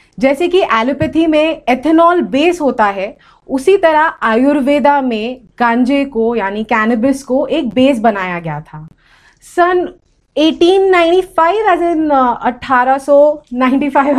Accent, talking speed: Indian, 115 wpm